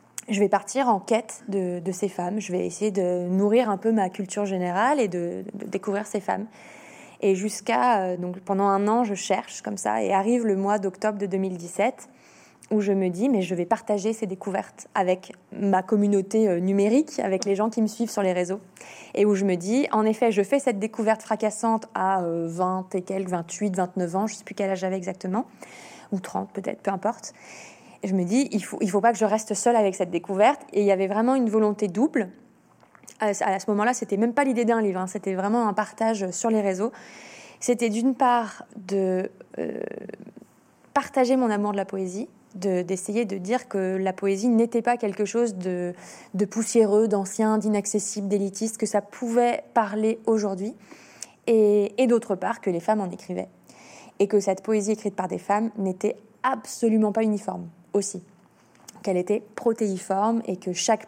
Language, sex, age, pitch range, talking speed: French, female, 20-39, 190-225 Hz, 195 wpm